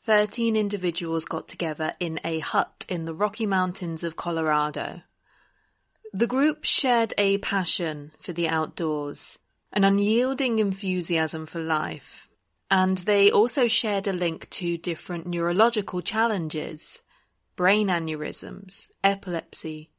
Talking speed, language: 115 wpm, English